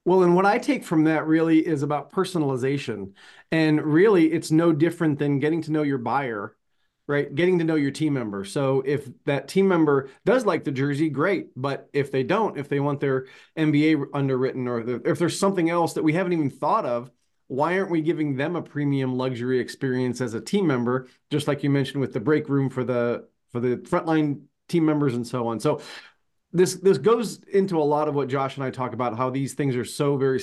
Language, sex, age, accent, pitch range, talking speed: English, male, 40-59, American, 130-160 Hz, 220 wpm